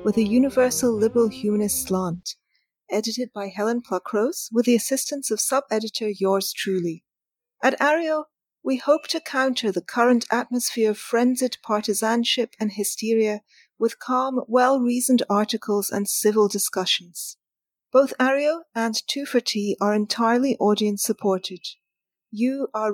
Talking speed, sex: 130 wpm, female